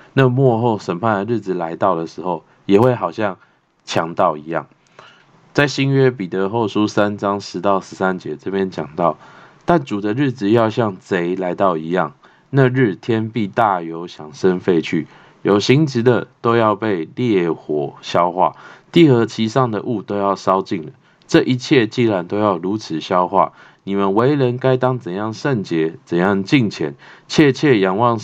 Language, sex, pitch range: Chinese, male, 95-130 Hz